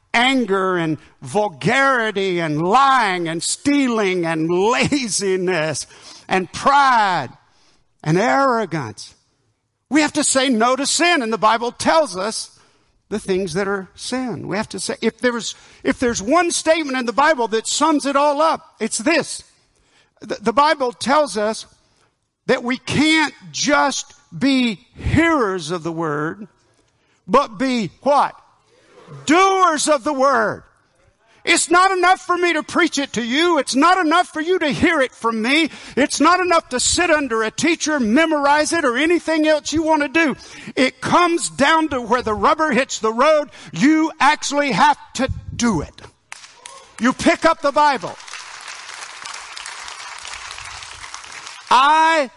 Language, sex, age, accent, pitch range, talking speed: English, male, 50-69, American, 210-305 Hz, 150 wpm